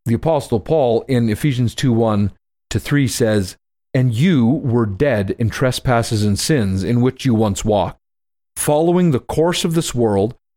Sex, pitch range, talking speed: male, 110-145 Hz, 150 wpm